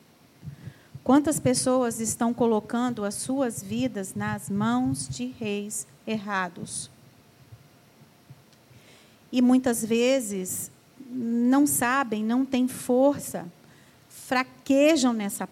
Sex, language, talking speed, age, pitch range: female, Portuguese, 85 wpm, 40-59, 185-260 Hz